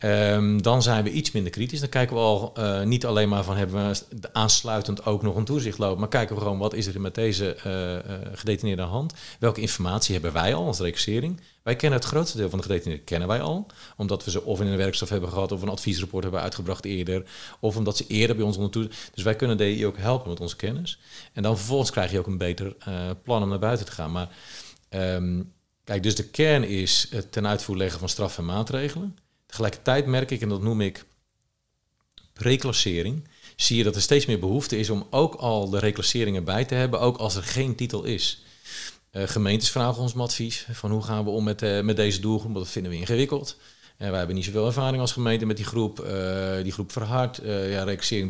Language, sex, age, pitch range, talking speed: Dutch, male, 40-59, 100-120 Hz, 230 wpm